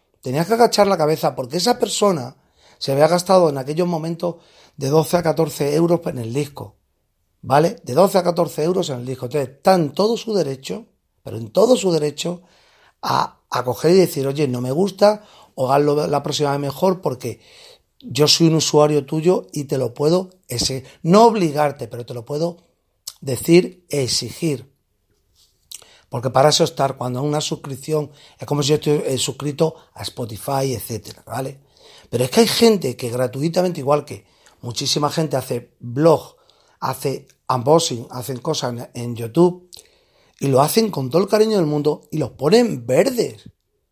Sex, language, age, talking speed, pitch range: male, Spanish, 40-59, 175 wpm, 130-175 Hz